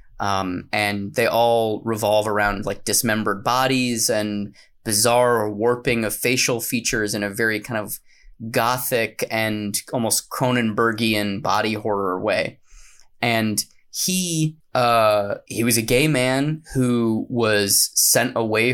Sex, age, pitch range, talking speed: male, 20-39, 105-130 Hz, 125 wpm